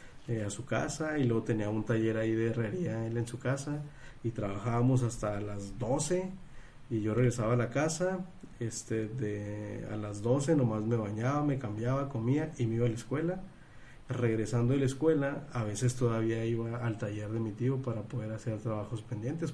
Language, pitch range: Spanish, 110-140 Hz